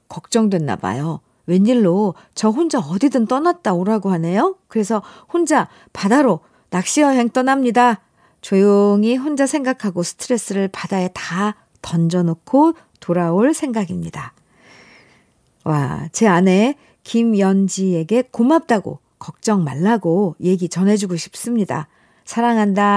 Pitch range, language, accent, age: 180-265 Hz, Korean, native, 50-69